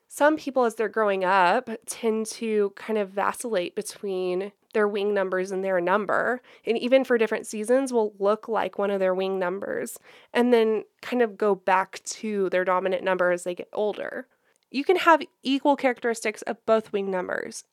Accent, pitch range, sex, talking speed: American, 210-260 Hz, female, 185 wpm